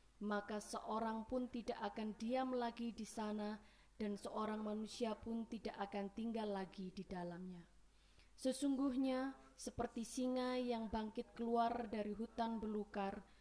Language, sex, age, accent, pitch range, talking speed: Indonesian, female, 20-39, native, 205-235 Hz, 125 wpm